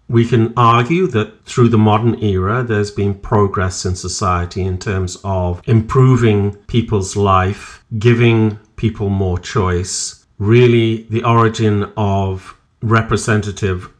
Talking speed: 120 wpm